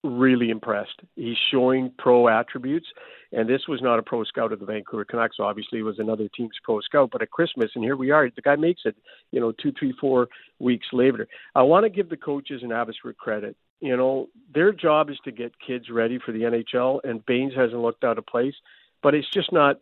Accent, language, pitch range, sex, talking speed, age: American, English, 120-145 Hz, male, 225 wpm, 50-69